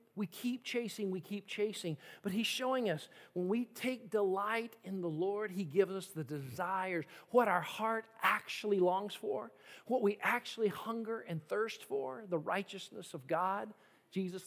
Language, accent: English, American